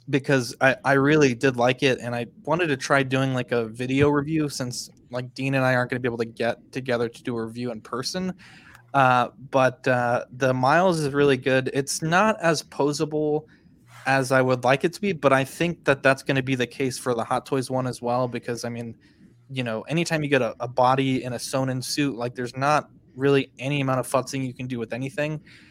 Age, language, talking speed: 20-39, English, 235 wpm